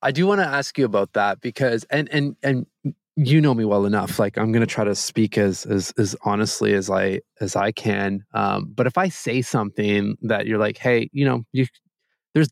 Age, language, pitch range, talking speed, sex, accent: 20-39, English, 110-140 Hz, 225 wpm, male, American